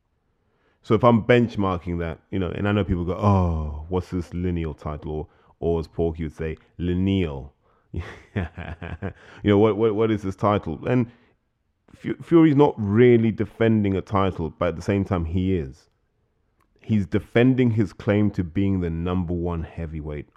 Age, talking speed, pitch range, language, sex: 20-39, 165 wpm, 85-105 Hz, English, male